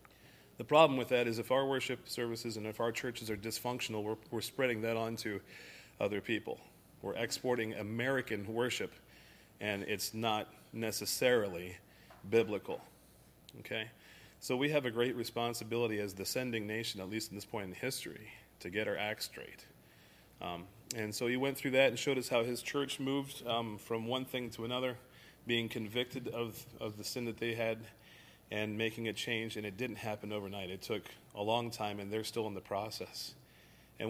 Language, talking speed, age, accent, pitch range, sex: English, 185 wpm, 30-49, American, 110-125 Hz, male